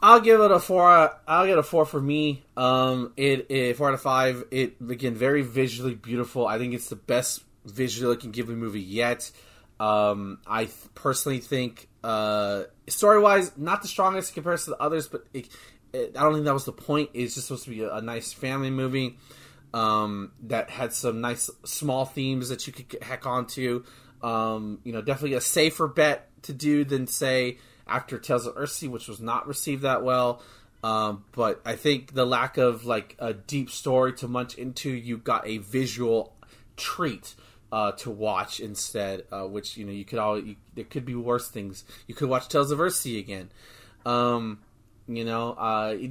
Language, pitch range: English, 110-135 Hz